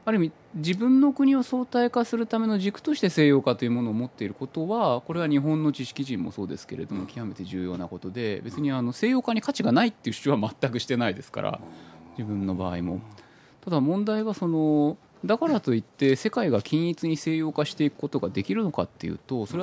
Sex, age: male, 20-39